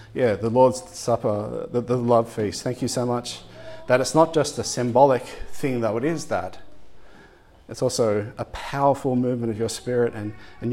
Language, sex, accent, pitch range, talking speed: English, male, Australian, 110-130 Hz, 185 wpm